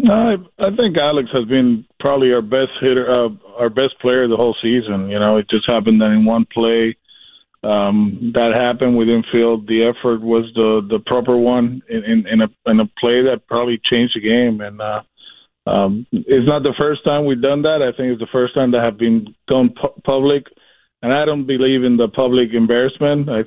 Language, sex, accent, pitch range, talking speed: English, male, American, 115-135 Hz, 215 wpm